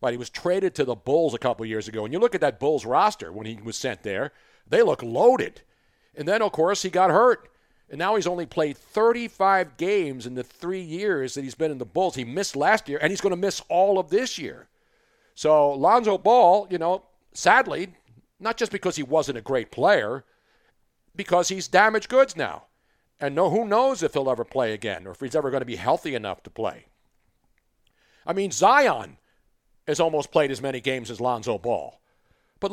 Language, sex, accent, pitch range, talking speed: English, male, American, 135-200 Hz, 210 wpm